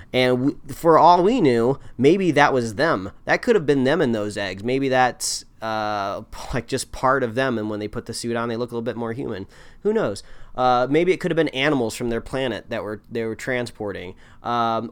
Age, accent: 30-49, American